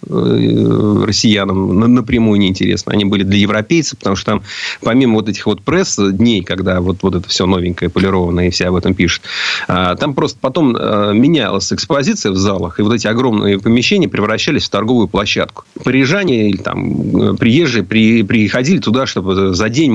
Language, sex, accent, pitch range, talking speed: Russian, male, native, 100-125 Hz, 160 wpm